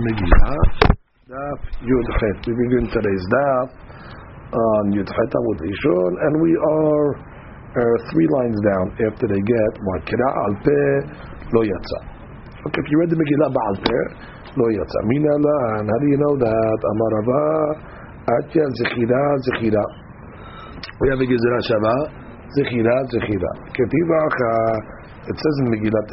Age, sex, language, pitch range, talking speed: 50-69, male, English, 110-140 Hz, 140 wpm